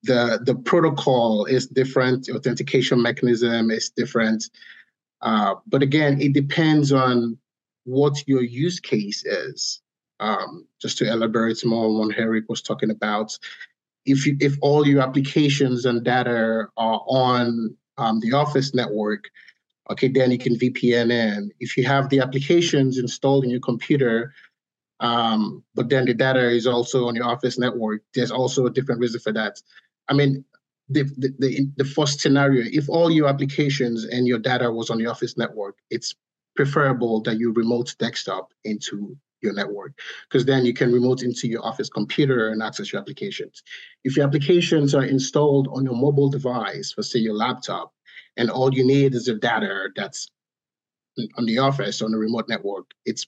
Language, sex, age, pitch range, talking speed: English, male, 30-49, 115-140 Hz, 165 wpm